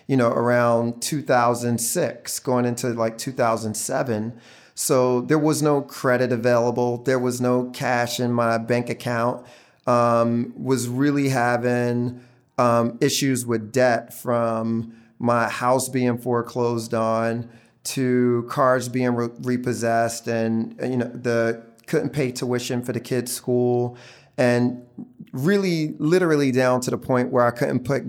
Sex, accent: male, American